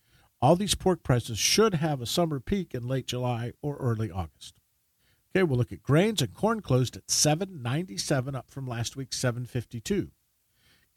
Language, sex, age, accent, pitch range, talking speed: English, male, 50-69, American, 115-160 Hz, 165 wpm